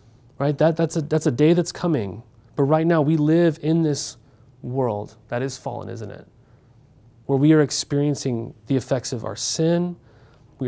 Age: 30-49